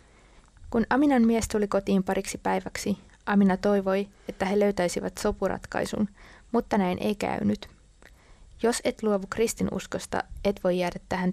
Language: Finnish